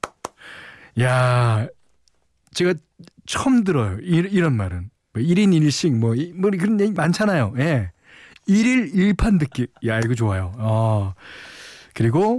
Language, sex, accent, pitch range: Korean, male, native, 100-150 Hz